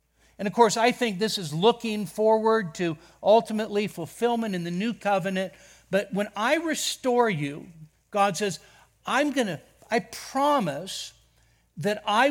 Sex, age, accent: male, 50-69, American